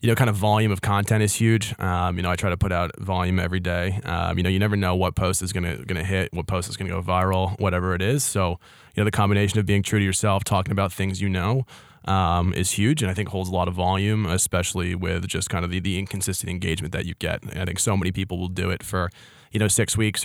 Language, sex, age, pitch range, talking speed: English, male, 20-39, 90-105 Hz, 280 wpm